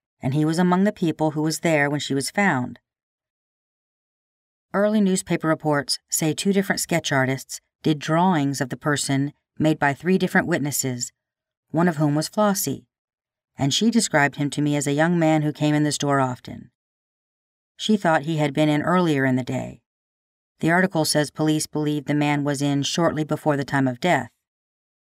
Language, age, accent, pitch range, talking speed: English, 40-59, American, 140-170 Hz, 185 wpm